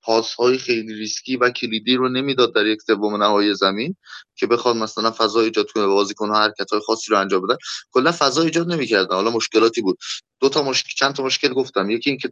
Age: 20-39